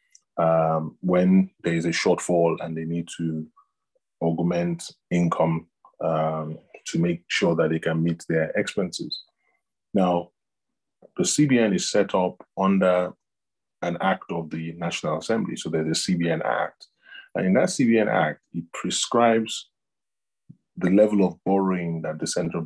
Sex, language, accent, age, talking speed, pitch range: male, English, Nigerian, 20-39, 145 wpm, 85-105 Hz